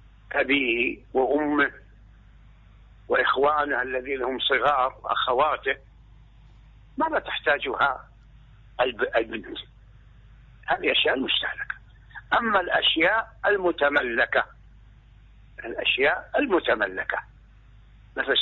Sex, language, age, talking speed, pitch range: male, Arabic, 60-79, 70 wpm, 100-135 Hz